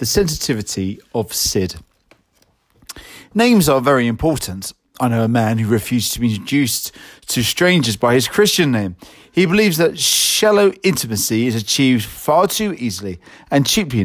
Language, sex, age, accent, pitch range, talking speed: English, male, 40-59, British, 110-170 Hz, 150 wpm